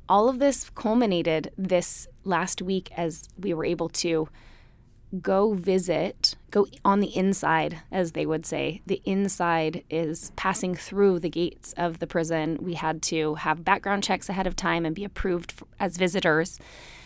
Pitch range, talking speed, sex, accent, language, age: 165-190 Hz, 160 wpm, female, American, English, 20-39